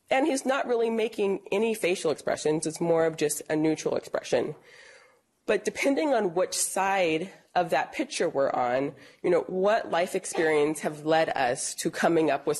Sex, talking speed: female, 175 wpm